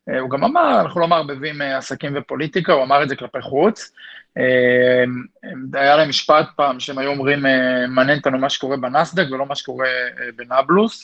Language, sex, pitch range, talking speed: Hebrew, male, 130-165 Hz, 165 wpm